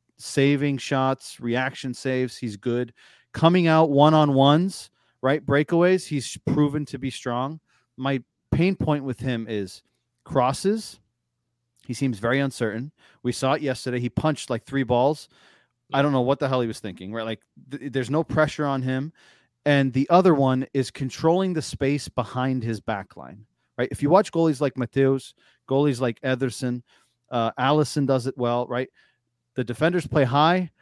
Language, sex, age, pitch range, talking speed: English, male, 30-49, 120-150 Hz, 165 wpm